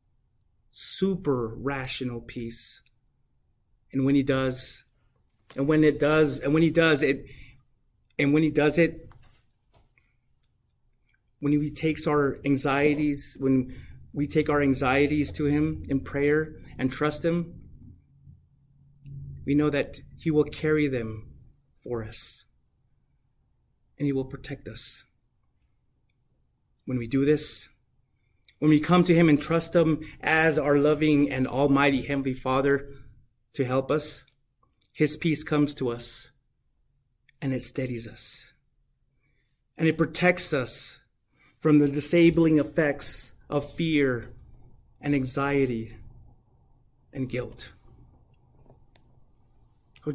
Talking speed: 115 wpm